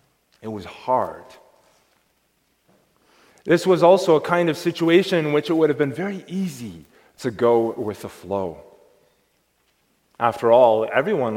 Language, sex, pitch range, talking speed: English, male, 125-180 Hz, 135 wpm